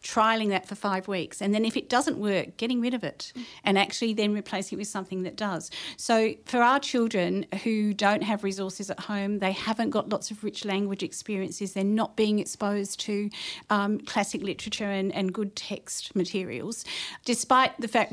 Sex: female